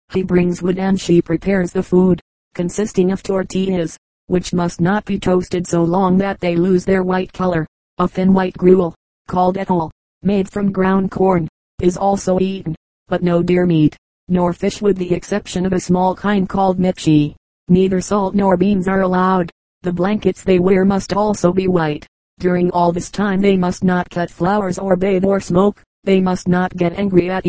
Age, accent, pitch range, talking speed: 30-49, American, 180-195 Hz, 185 wpm